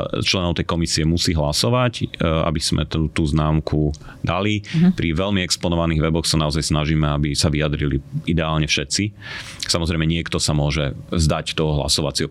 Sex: male